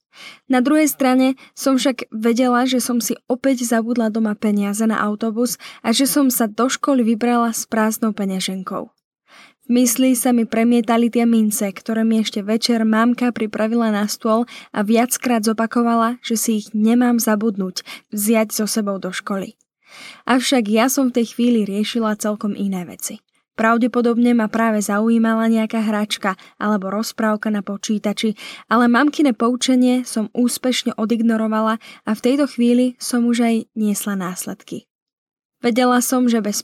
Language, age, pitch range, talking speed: Slovak, 10-29, 220-245 Hz, 150 wpm